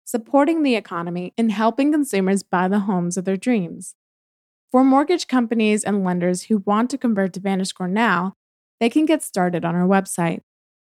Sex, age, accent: female, 20-39, American